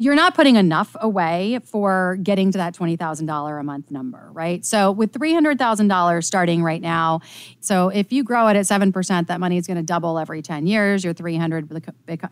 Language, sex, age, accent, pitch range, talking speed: English, female, 30-49, American, 170-215 Hz, 225 wpm